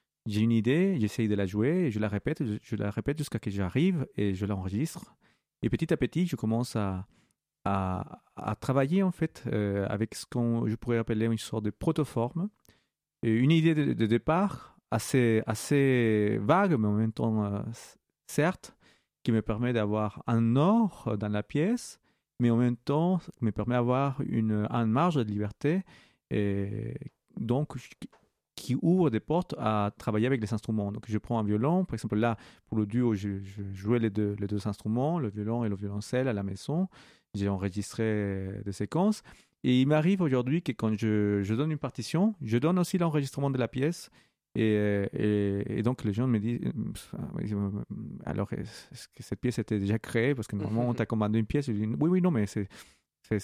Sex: male